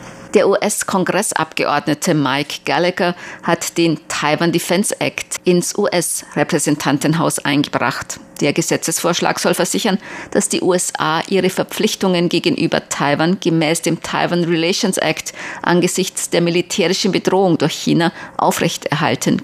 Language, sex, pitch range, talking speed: German, female, 155-180 Hz, 110 wpm